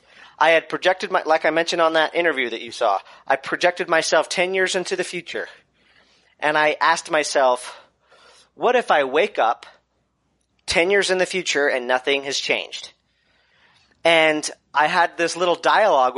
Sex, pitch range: male, 150-185 Hz